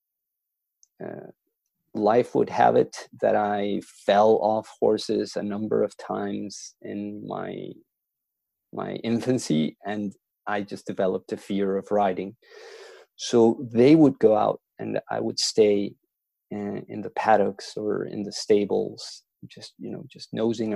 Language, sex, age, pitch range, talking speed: English, male, 30-49, 100-120 Hz, 140 wpm